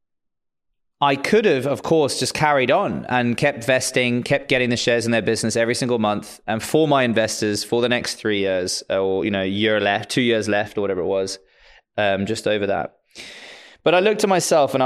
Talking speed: 210 wpm